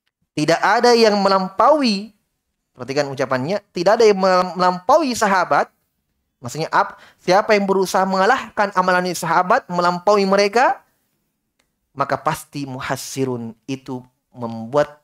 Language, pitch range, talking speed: Indonesian, 135-210 Hz, 105 wpm